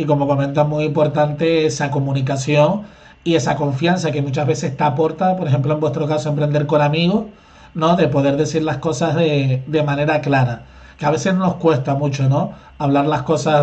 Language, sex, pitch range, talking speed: Spanish, male, 145-170 Hz, 190 wpm